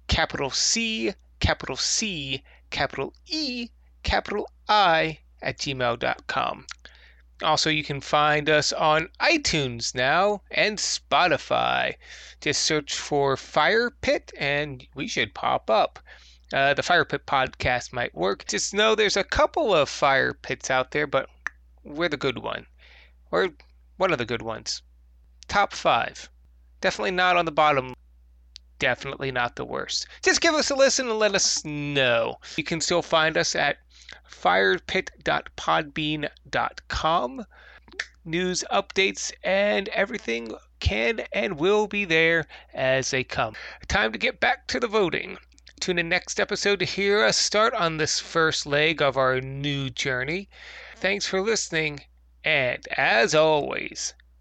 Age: 20-39